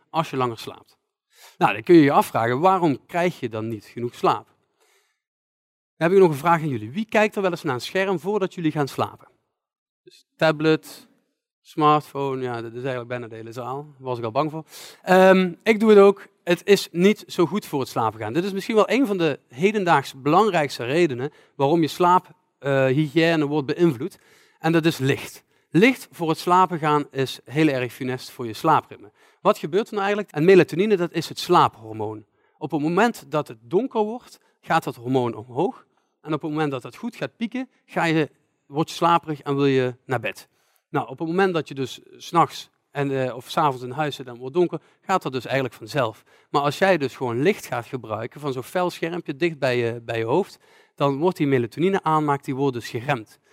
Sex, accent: male, Dutch